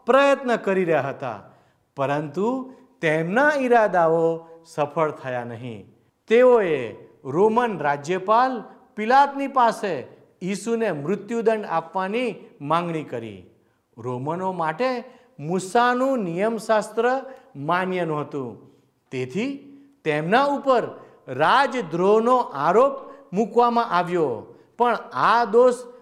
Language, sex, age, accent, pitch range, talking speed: Gujarati, male, 50-69, native, 150-245 Hz, 85 wpm